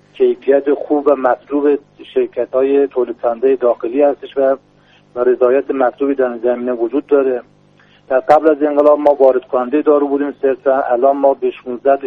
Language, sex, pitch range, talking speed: Persian, male, 130-150 Hz, 145 wpm